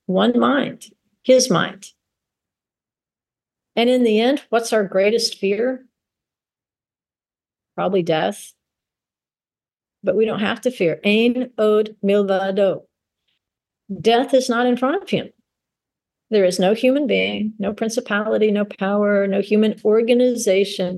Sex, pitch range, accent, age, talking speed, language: female, 190-230 Hz, American, 50-69, 120 wpm, English